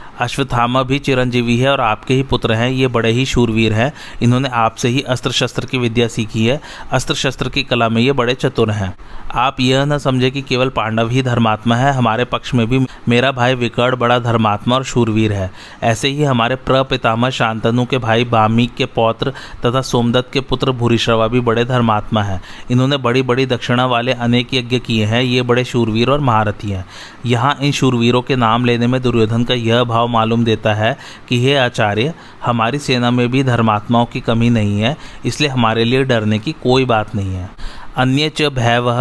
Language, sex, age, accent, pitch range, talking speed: Hindi, male, 30-49, native, 115-130 Hz, 190 wpm